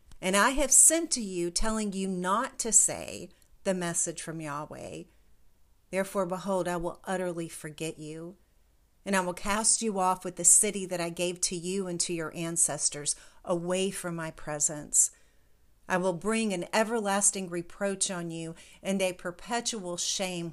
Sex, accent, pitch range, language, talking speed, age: female, American, 165-195 Hz, English, 165 wpm, 50-69